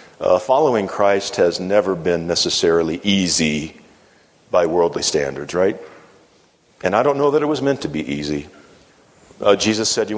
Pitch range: 80-105 Hz